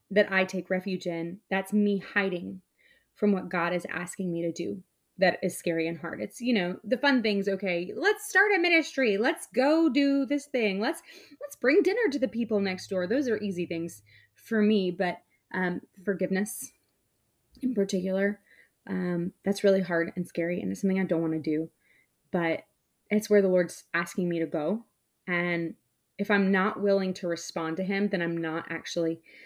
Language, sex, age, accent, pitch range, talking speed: English, female, 20-39, American, 175-230 Hz, 190 wpm